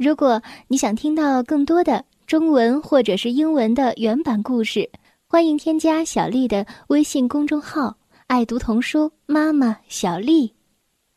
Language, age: Chinese, 10-29